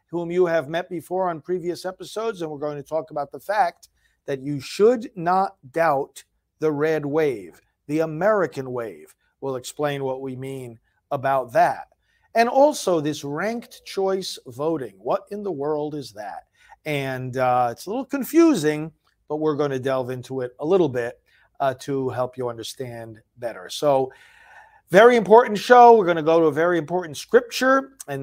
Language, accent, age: English, American, 50-69